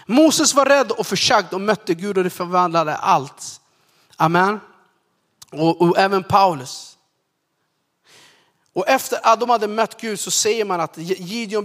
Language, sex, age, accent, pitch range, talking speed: Swedish, male, 30-49, native, 160-220 Hz, 150 wpm